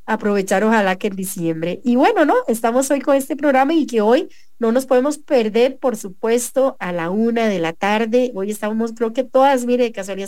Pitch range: 210-260 Hz